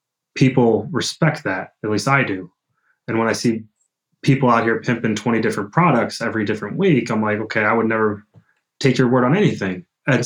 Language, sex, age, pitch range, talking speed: English, male, 20-39, 105-120 Hz, 195 wpm